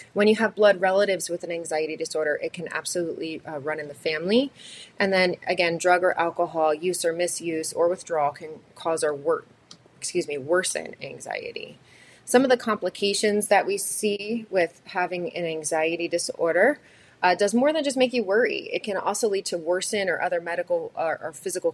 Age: 30-49